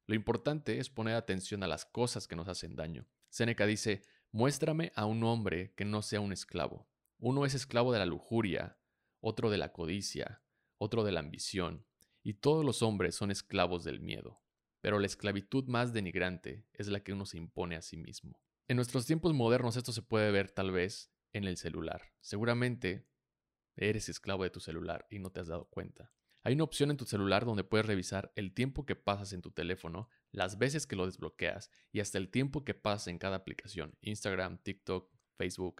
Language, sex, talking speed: Spanish, male, 195 wpm